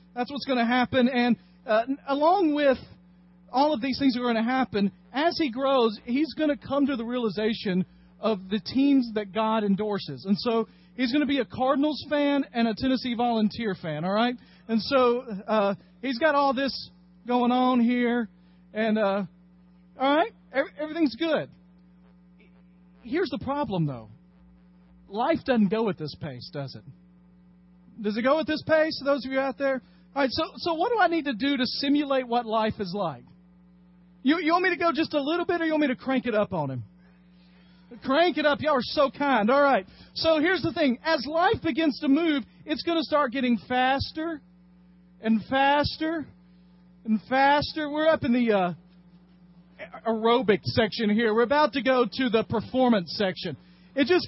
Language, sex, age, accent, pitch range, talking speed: English, male, 40-59, American, 180-285 Hz, 190 wpm